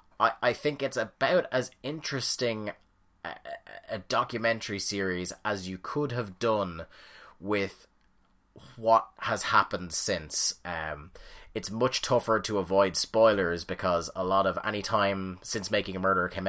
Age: 30-49